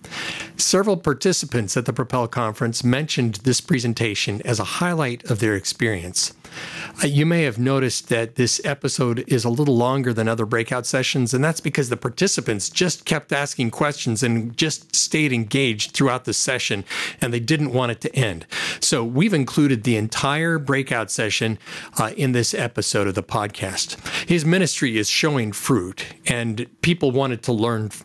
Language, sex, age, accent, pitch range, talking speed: English, male, 50-69, American, 115-155 Hz, 165 wpm